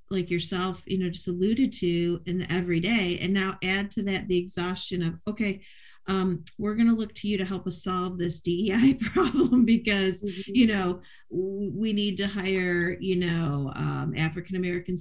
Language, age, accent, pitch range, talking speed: English, 40-59, American, 175-220 Hz, 180 wpm